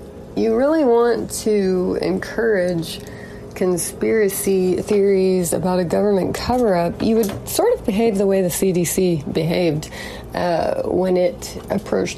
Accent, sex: American, female